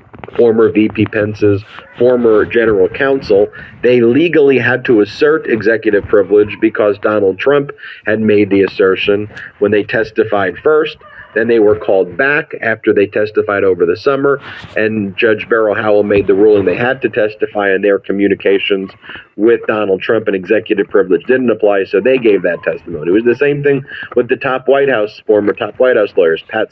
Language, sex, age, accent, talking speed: English, male, 40-59, American, 175 wpm